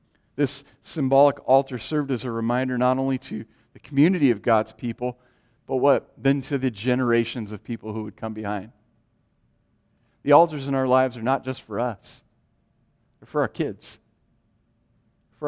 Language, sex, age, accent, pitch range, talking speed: English, male, 50-69, American, 110-135 Hz, 165 wpm